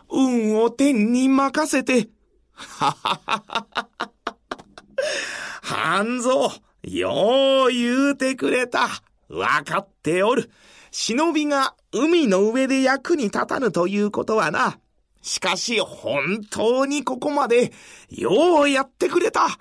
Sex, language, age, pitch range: male, Japanese, 40-59, 210-295 Hz